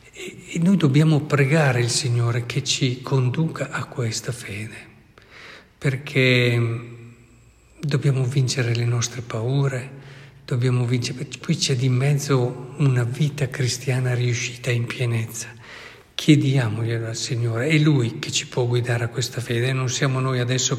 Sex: male